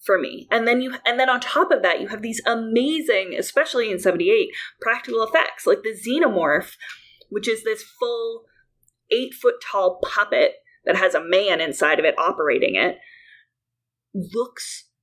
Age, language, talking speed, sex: 20-39, English, 160 wpm, female